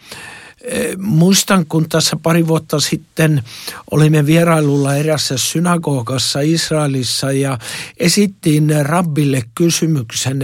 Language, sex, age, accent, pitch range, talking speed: Finnish, male, 60-79, native, 115-150 Hz, 85 wpm